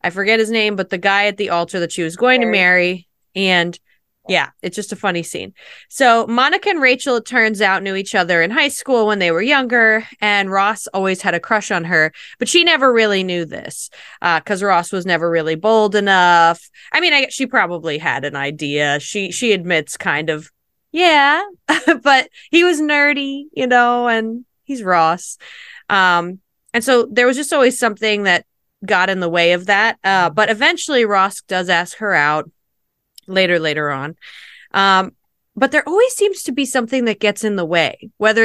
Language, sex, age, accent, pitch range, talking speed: English, female, 20-39, American, 180-255 Hz, 195 wpm